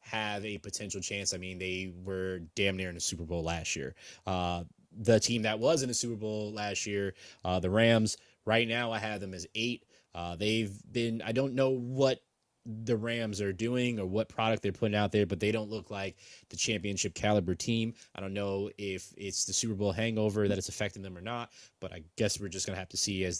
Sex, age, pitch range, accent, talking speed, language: male, 20-39, 95-110 Hz, American, 230 wpm, English